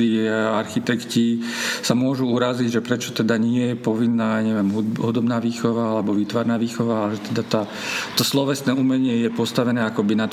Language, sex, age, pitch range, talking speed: Slovak, male, 50-69, 110-125 Hz, 150 wpm